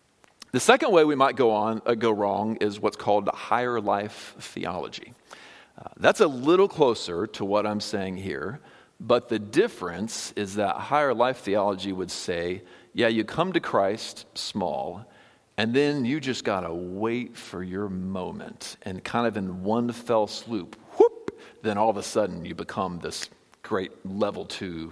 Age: 50-69